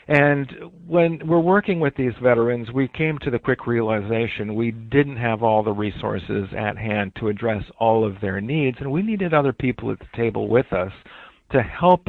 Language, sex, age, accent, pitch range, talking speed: English, male, 50-69, American, 110-135 Hz, 195 wpm